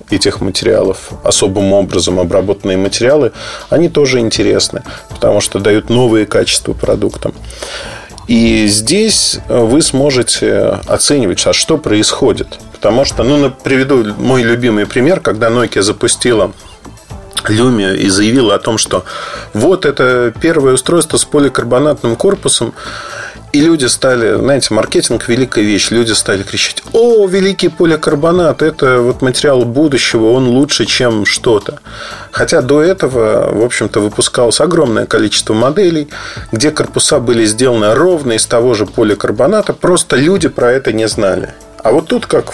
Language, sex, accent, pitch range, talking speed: Russian, male, native, 110-165 Hz, 135 wpm